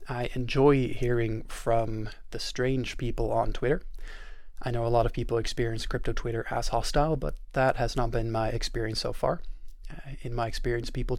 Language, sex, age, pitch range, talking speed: English, male, 20-39, 115-140 Hz, 180 wpm